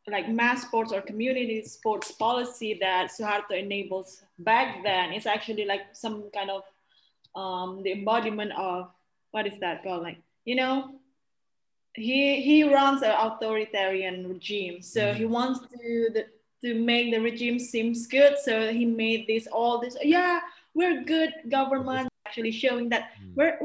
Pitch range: 205-260 Hz